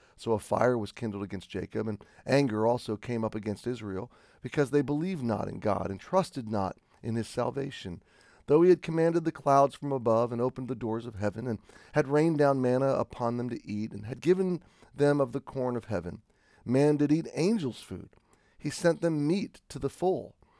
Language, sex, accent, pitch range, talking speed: English, male, American, 110-145 Hz, 205 wpm